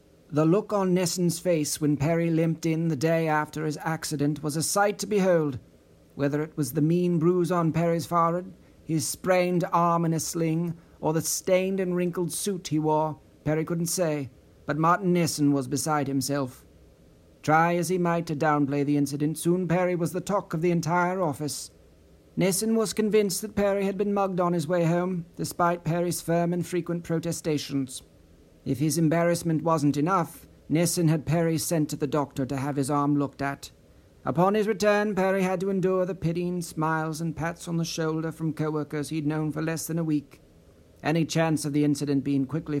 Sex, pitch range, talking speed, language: male, 145-175 Hz, 190 wpm, English